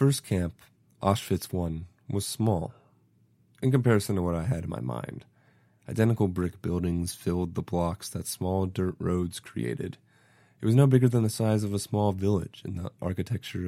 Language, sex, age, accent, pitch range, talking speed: English, male, 30-49, American, 90-115 Hz, 180 wpm